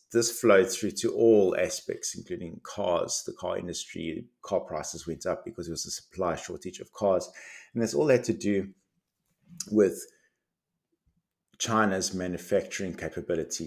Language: English